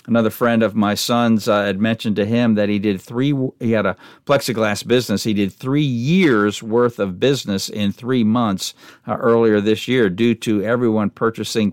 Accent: American